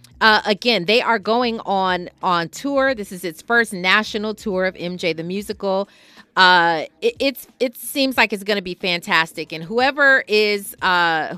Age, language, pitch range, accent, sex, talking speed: 30-49, English, 170-220 Hz, American, female, 175 wpm